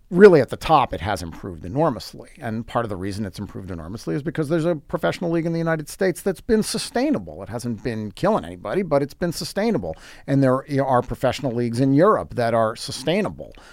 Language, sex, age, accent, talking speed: English, male, 40-59, American, 210 wpm